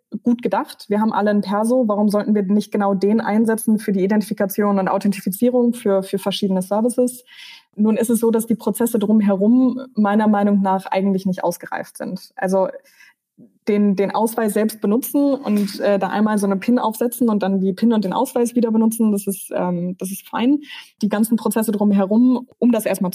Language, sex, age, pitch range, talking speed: German, female, 20-39, 195-230 Hz, 190 wpm